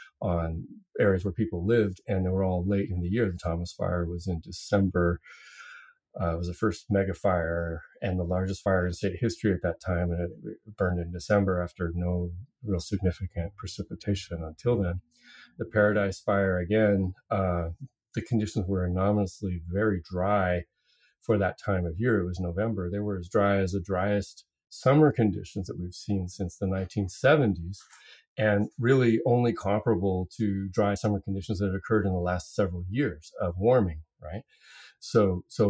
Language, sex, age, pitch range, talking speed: English, male, 40-59, 90-105 Hz, 175 wpm